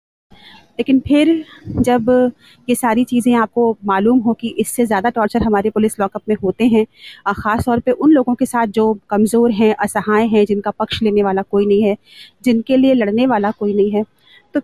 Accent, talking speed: native, 190 wpm